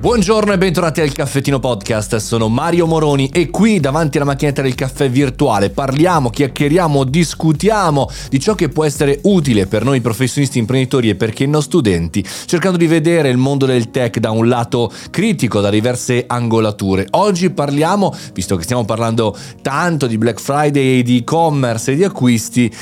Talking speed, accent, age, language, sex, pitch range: 165 wpm, native, 30-49, Italian, male, 115-160 Hz